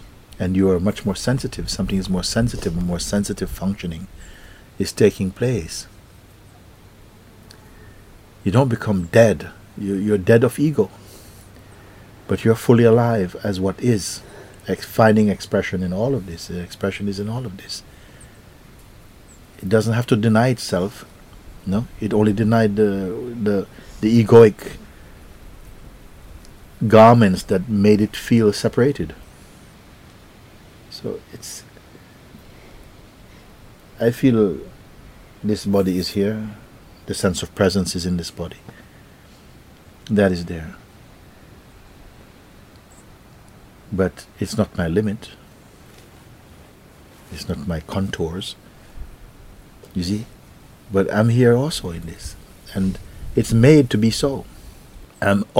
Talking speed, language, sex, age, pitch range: 120 wpm, English, male, 50-69, 95-115 Hz